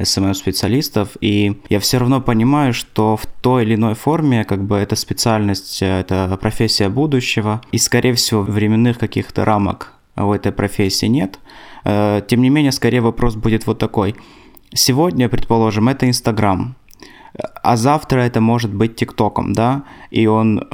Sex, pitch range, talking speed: male, 105-125 Hz, 150 wpm